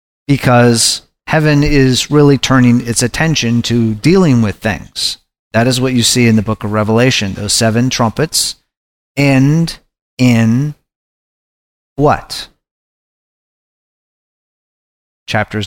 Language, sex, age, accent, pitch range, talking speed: English, male, 30-49, American, 105-130 Hz, 105 wpm